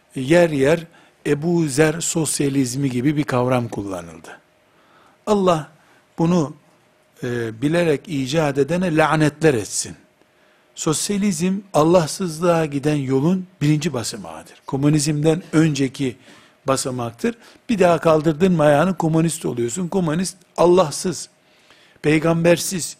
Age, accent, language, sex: 60-79, native, Turkish, male